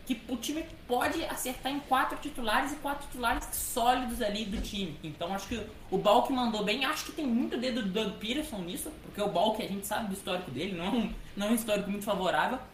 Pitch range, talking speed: 185-245 Hz, 225 wpm